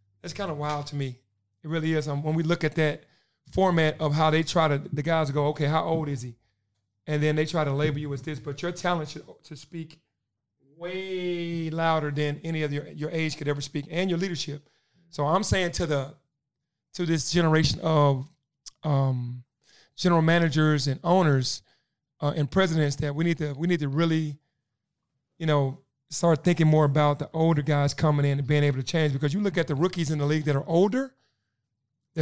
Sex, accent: male, American